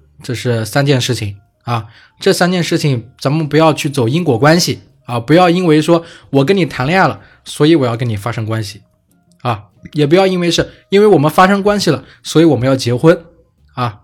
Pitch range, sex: 120-165 Hz, male